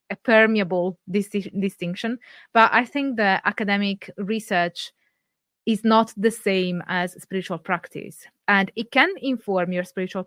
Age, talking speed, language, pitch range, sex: 20-39, 135 wpm, English, 185-230 Hz, female